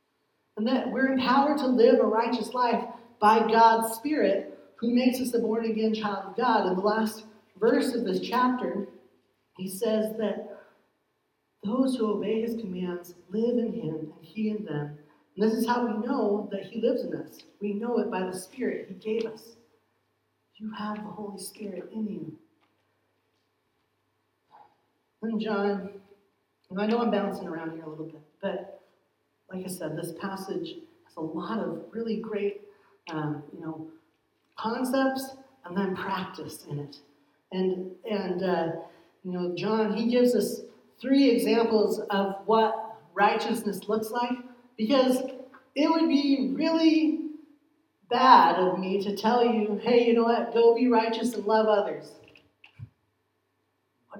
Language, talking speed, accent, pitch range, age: English, 155 wpm, American, 185-235 Hz, 40-59